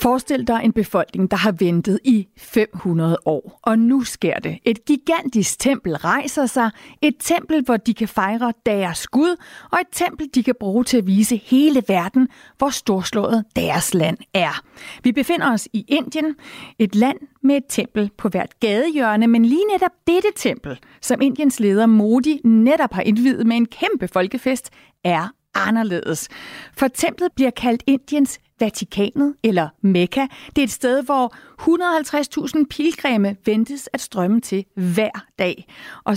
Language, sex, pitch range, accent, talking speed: Danish, female, 210-275 Hz, native, 160 wpm